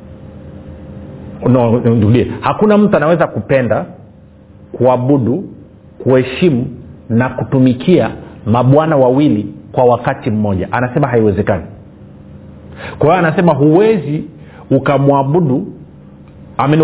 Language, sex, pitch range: Swahili, male, 105-155 Hz